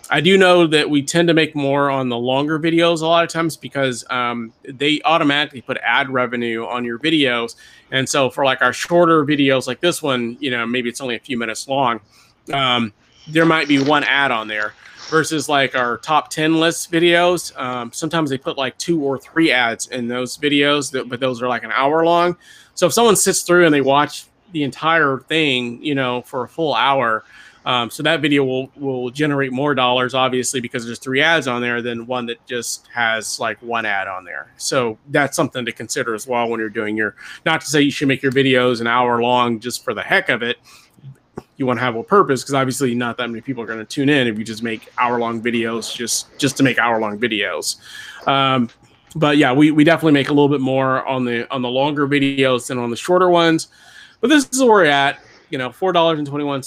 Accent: American